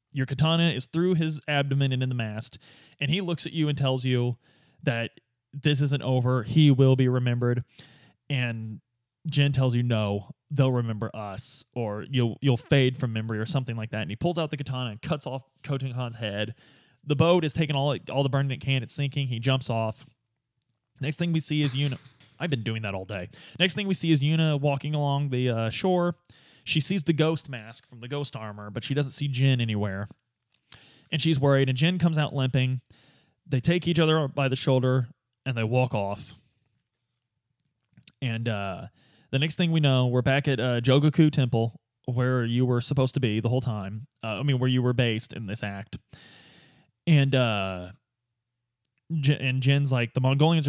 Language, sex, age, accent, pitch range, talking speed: English, male, 20-39, American, 120-145 Hz, 200 wpm